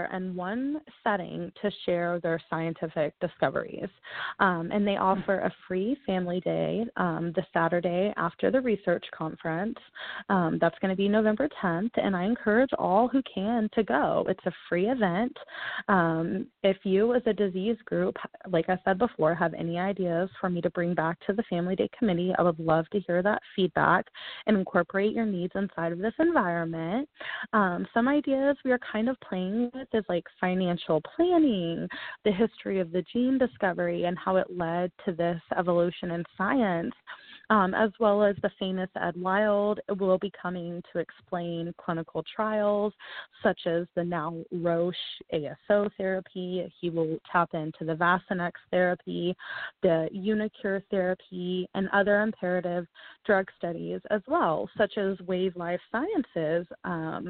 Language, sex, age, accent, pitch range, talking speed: English, female, 20-39, American, 175-210 Hz, 160 wpm